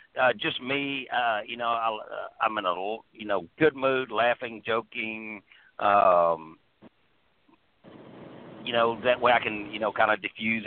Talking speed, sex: 165 wpm, male